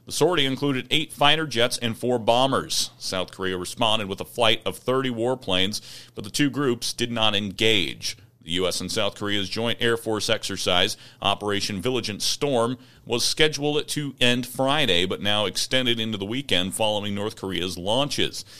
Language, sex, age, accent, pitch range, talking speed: English, male, 40-59, American, 95-120 Hz, 170 wpm